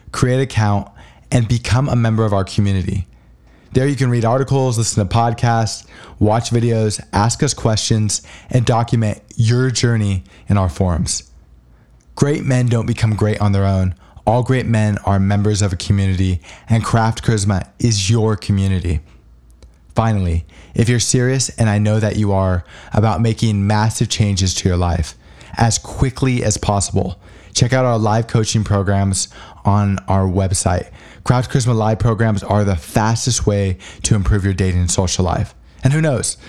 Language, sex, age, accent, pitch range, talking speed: English, male, 20-39, American, 95-115 Hz, 165 wpm